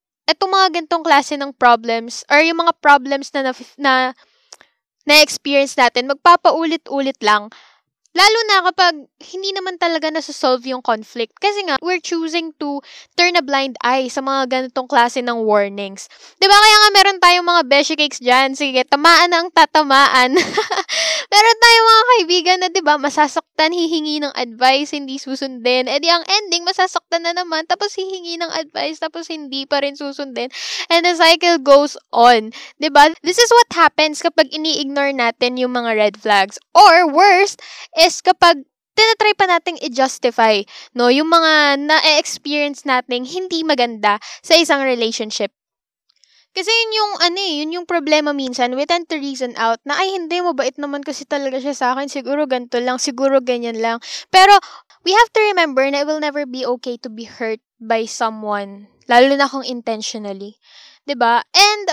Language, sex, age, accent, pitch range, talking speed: Filipino, female, 10-29, native, 255-345 Hz, 170 wpm